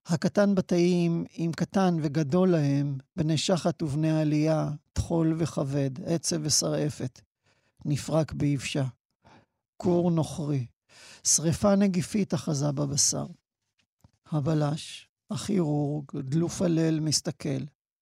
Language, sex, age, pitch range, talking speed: Hebrew, male, 50-69, 145-175 Hz, 90 wpm